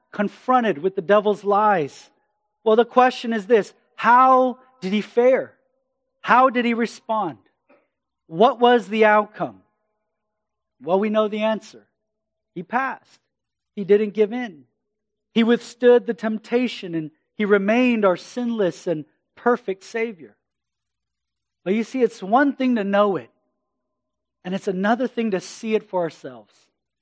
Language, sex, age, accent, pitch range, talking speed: English, male, 40-59, American, 195-235 Hz, 140 wpm